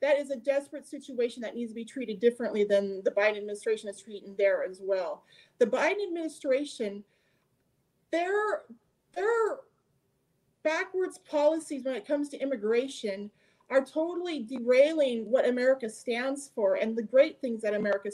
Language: English